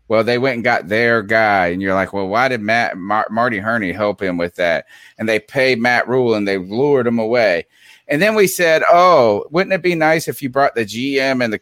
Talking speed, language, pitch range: 230 wpm, English, 110-140 Hz